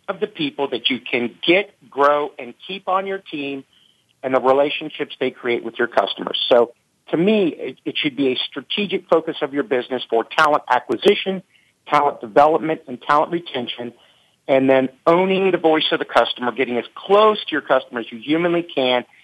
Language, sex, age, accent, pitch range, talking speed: English, male, 50-69, American, 130-170 Hz, 185 wpm